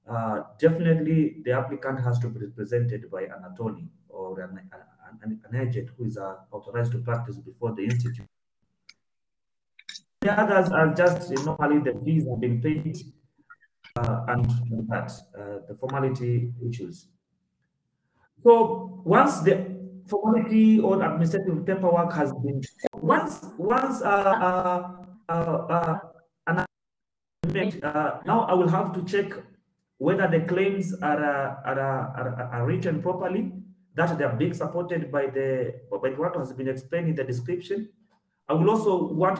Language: English